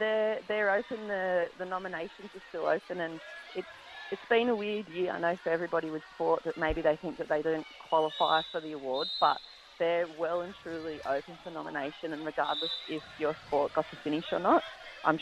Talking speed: 205 wpm